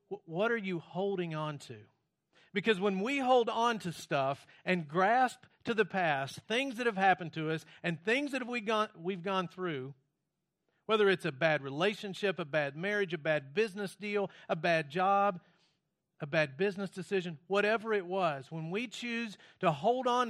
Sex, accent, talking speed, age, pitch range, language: male, American, 170 wpm, 40-59, 155-200 Hz, English